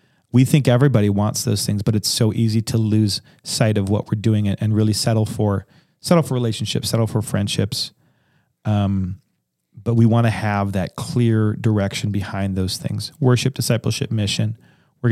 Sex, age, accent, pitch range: male, 40-59, American, 105-125 Hz